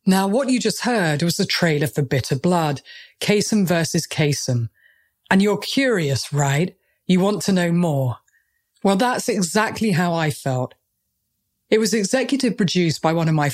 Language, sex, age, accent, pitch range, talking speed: English, female, 40-59, British, 145-205 Hz, 165 wpm